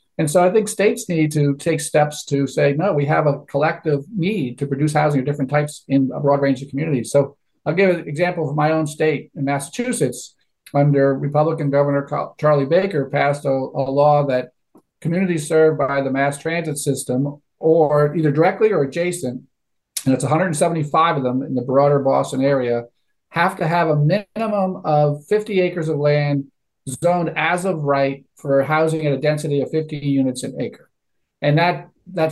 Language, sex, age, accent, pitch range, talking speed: English, male, 50-69, American, 140-165 Hz, 185 wpm